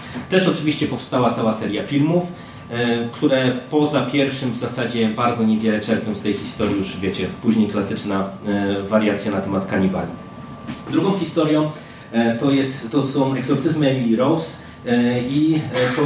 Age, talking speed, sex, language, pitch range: 30-49, 130 wpm, male, Polish, 120-140 Hz